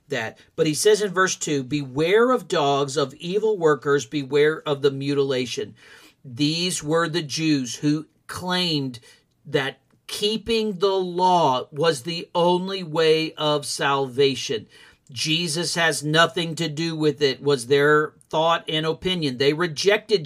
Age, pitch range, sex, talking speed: 50-69, 150-210 Hz, male, 140 wpm